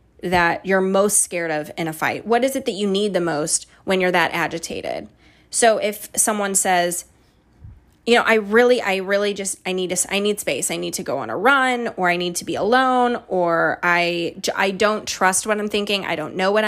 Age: 20-39